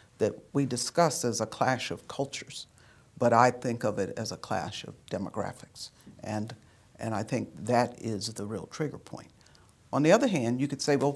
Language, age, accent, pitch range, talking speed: English, 60-79, American, 110-135 Hz, 195 wpm